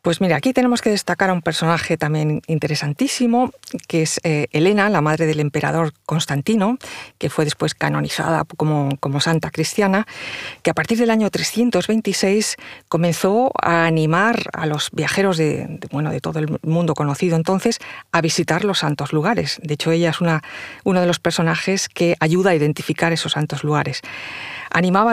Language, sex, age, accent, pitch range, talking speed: Spanish, female, 40-59, Spanish, 155-195 Hz, 170 wpm